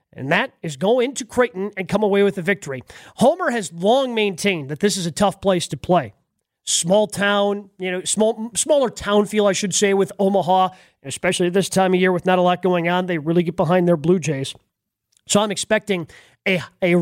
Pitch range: 175-210 Hz